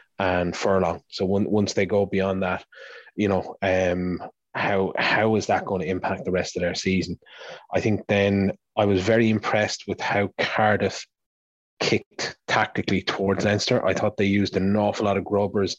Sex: male